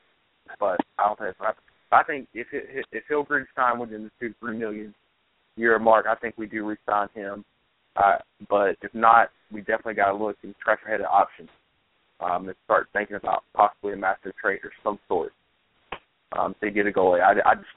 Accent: American